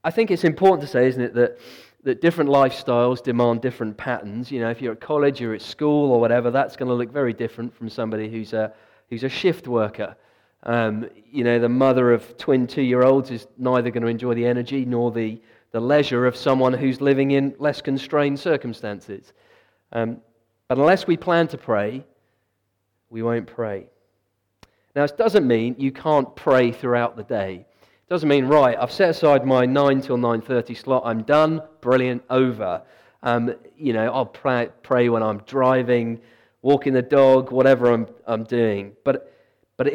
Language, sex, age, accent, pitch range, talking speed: English, male, 40-59, British, 115-135 Hz, 180 wpm